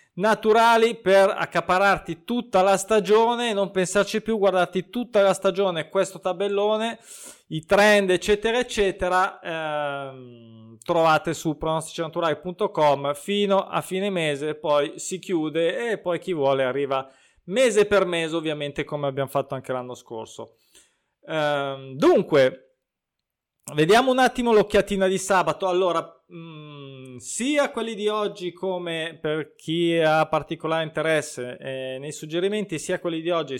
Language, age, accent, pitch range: Italian, 20-39, native, 145-190 Hz